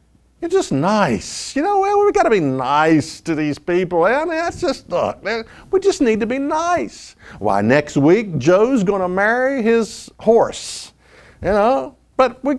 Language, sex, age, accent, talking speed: English, male, 50-69, American, 180 wpm